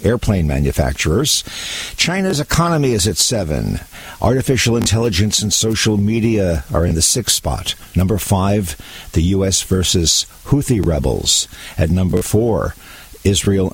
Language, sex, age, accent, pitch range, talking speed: English, male, 50-69, American, 85-110 Hz, 120 wpm